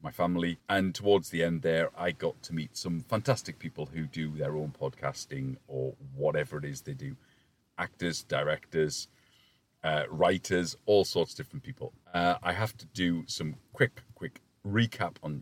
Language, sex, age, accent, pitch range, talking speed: English, male, 40-59, British, 85-130 Hz, 170 wpm